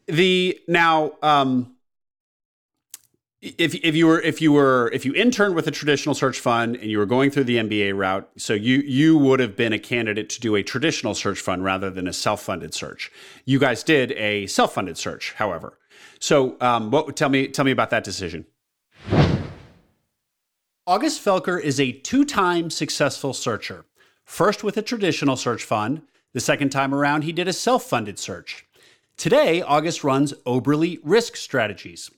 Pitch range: 120-170 Hz